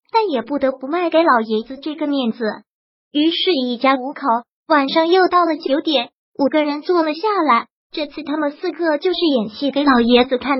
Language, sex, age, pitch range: Chinese, male, 20-39, 270-340 Hz